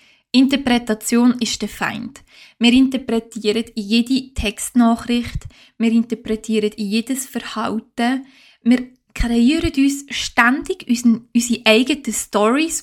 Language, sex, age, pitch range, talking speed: German, female, 20-39, 225-265 Hz, 90 wpm